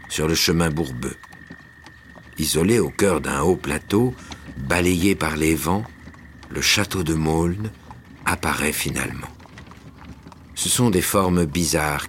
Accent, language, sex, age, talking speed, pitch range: French, French, male, 60-79, 125 wpm, 80-105 Hz